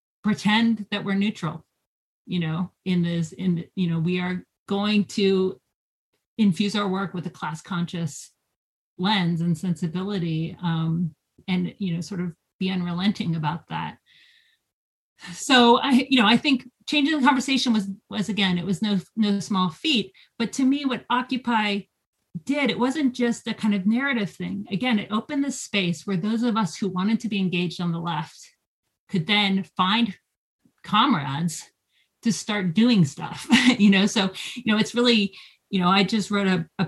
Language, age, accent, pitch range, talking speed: English, 30-49, American, 175-220 Hz, 170 wpm